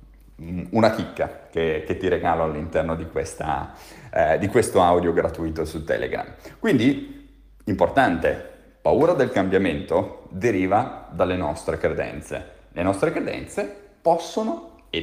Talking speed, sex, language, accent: 115 wpm, male, Italian, native